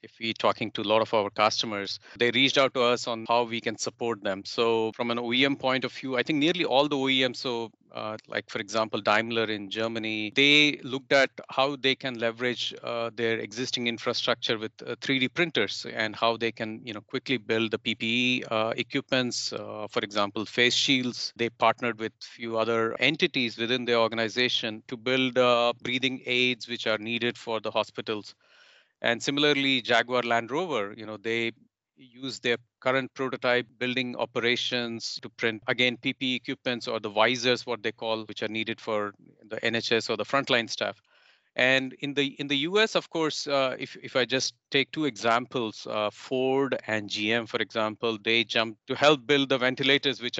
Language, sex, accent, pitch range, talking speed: English, male, Indian, 110-130 Hz, 190 wpm